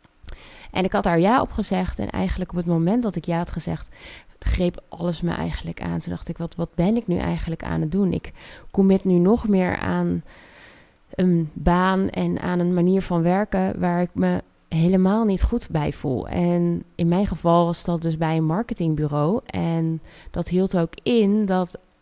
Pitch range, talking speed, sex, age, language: 170-200 Hz, 195 wpm, female, 20-39, Dutch